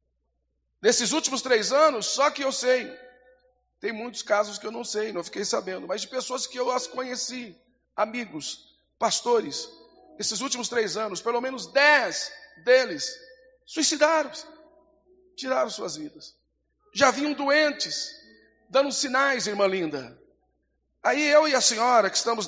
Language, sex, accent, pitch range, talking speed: Portuguese, male, Brazilian, 215-305 Hz, 140 wpm